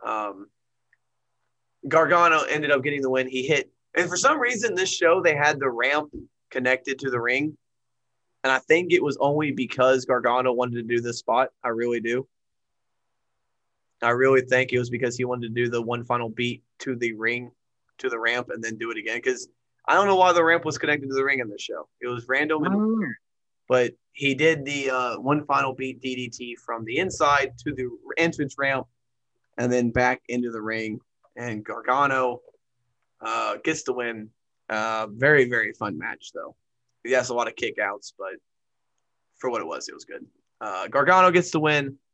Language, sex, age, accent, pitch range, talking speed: English, male, 20-39, American, 120-145 Hz, 195 wpm